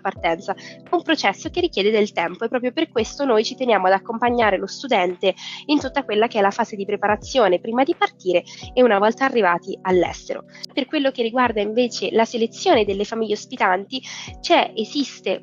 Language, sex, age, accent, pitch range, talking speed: Italian, female, 20-39, native, 215-275 Hz, 185 wpm